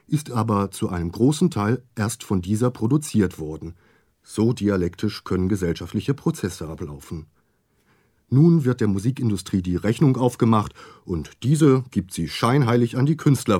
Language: German